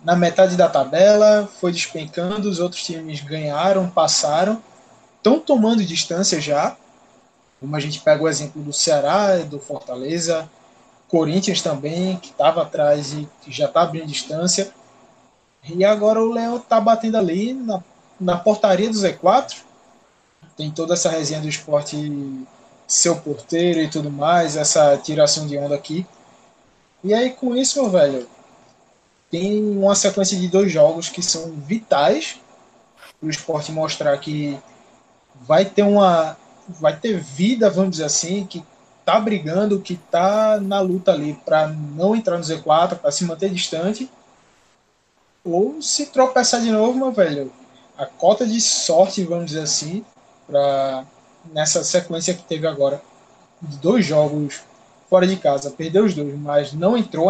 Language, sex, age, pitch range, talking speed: Portuguese, male, 20-39, 150-200 Hz, 150 wpm